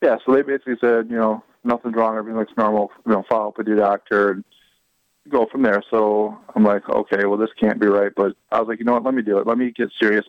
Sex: male